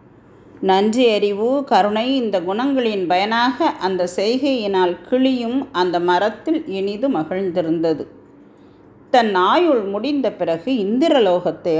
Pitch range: 185-275 Hz